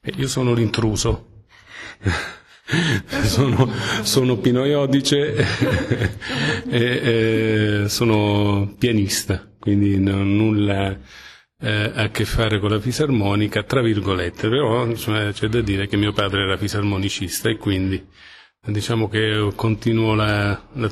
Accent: native